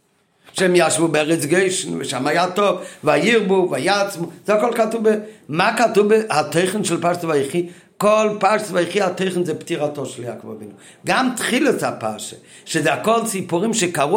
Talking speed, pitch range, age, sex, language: 150 wpm, 160-205 Hz, 50-69, male, Hebrew